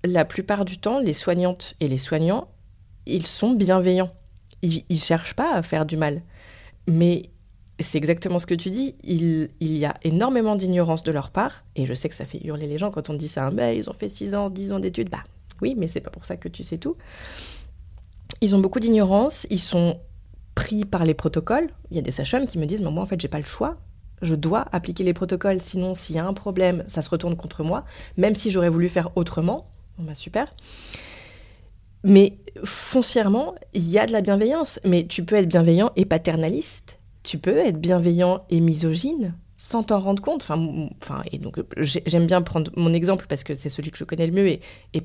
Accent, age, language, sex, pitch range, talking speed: French, 30-49, French, female, 145-185 Hz, 215 wpm